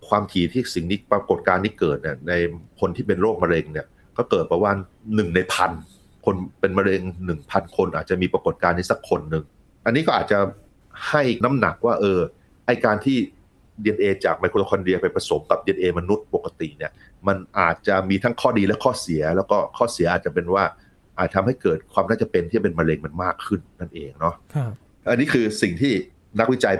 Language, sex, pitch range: Thai, male, 90-110 Hz